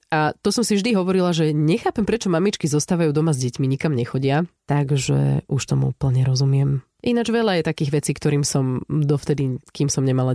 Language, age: Slovak, 30-49